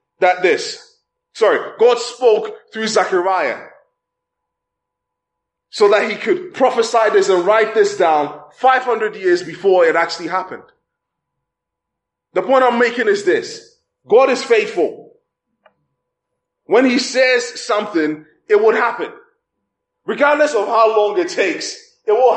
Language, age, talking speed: English, 20-39, 125 wpm